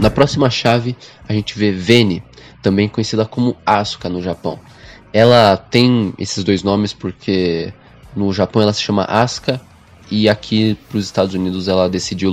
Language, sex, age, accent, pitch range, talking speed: Portuguese, male, 20-39, Brazilian, 95-115 Hz, 160 wpm